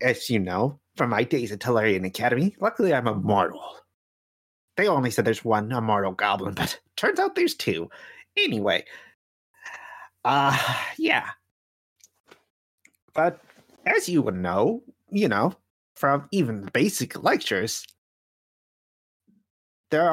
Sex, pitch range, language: male, 110-160 Hz, English